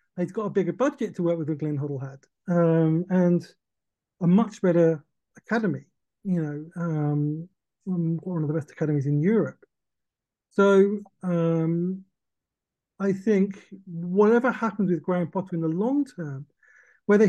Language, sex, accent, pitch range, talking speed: English, male, British, 175-205 Hz, 140 wpm